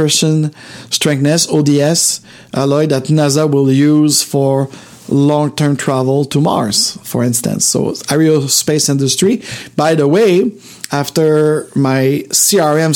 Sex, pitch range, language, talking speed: male, 135-165 Hz, English, 115 wpm